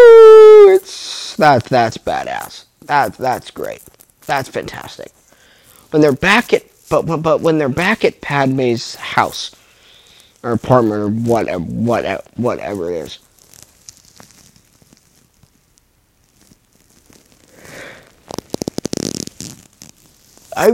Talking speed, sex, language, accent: 85 wpm, male, English, American